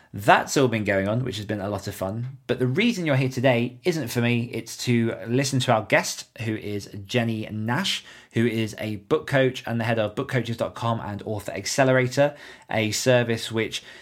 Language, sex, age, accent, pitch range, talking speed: English, male, 20-39, British, 110-130 Hz, 200 wpm